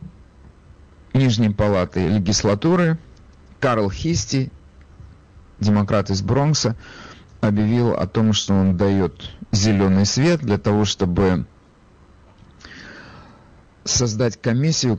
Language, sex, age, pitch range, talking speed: Russian, male, 50-69, 90-115 Hz, 85 wpm